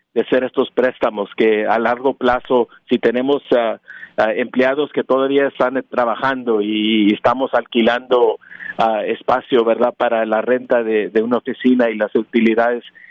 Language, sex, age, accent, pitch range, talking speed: Spanish, male, 50-69, Mexican, 115-135 Hz, 150 wpm